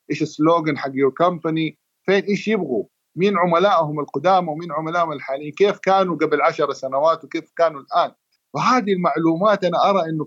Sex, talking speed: male, 160 wpm